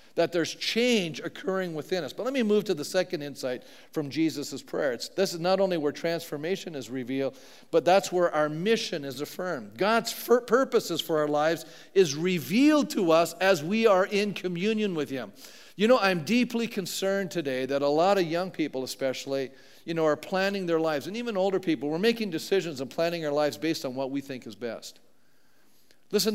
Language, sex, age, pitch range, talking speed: English, male, 50-69, 135-195 Hz, 195 wpm